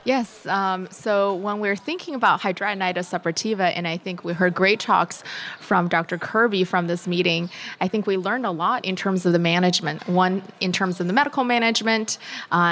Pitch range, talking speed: 175-200 Hz, 195 wpm